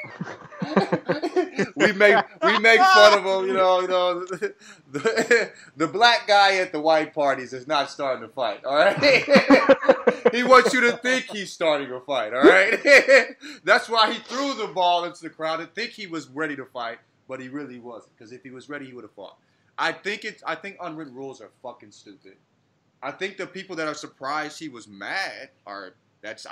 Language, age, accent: English, 30-49, American